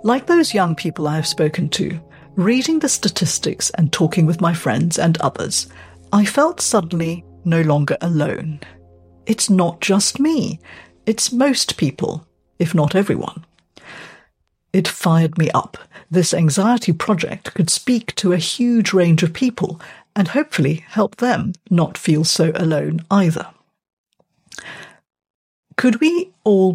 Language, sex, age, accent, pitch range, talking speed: English, female, 50-69, British, 165-210 Hz, 135 wpm